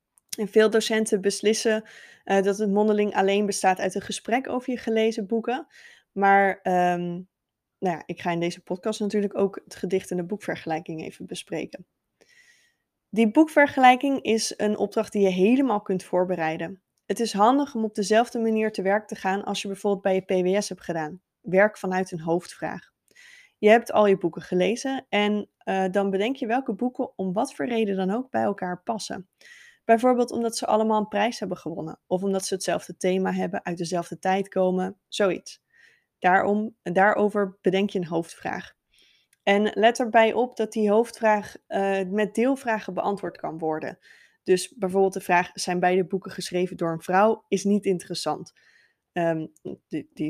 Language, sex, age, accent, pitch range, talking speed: Dutch, female, 20-39, Dutch, 185-220 Hz, 165 wpm